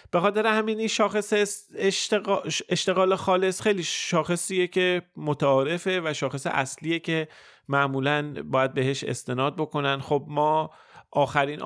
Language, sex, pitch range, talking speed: Persian, male, 120-145 Hz, 125 wpm